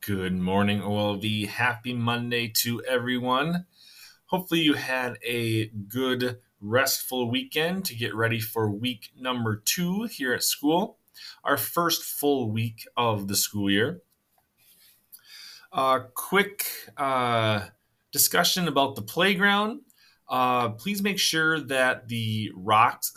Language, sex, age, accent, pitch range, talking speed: English, male, 20-39, American, 110-150 Hz, 120 wpm